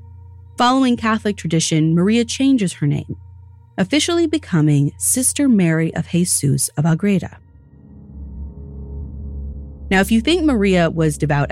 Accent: American